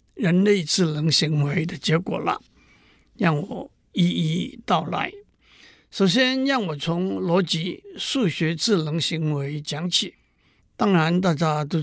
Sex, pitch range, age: male, 160-210 Hz, 60-79